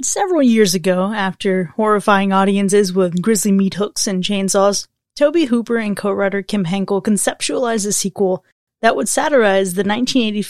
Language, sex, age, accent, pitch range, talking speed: English, female, 30-49, American, 190-235 Hz, 150 wpm